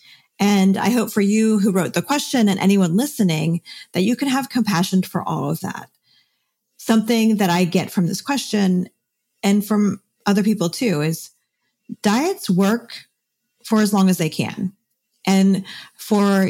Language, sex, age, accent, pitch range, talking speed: English, female, 40-59, American, 175-220 Hz, 160 wpm